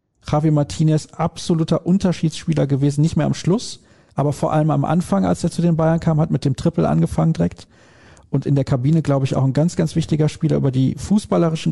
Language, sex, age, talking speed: German, male, 40-59, 210 wpm